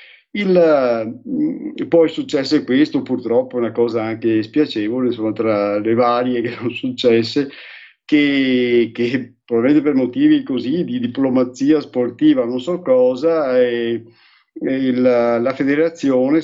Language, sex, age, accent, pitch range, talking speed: Italian, male, 50-69, native, 115-160 Hz, 120 wpm